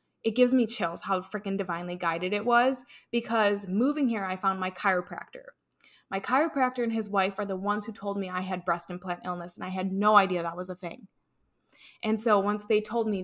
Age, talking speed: 20-39, 220 wpm